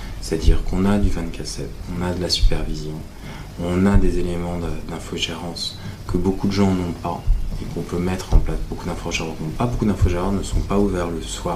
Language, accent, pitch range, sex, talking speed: French, French, 85-100 Hz, male, 200 wpm